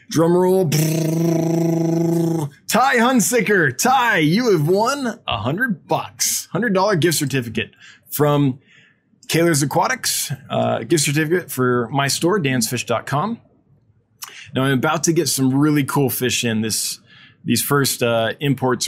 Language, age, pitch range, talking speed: English, 20-39, 120-160 Hz, 125 wpm